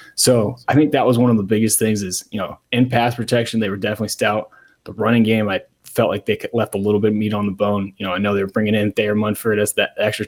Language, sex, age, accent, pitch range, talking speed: English, male, 20-39, American, 105-120 Hz, 285 wpm